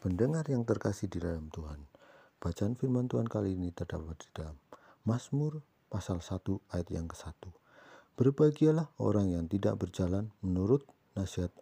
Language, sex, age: English, male, 50-69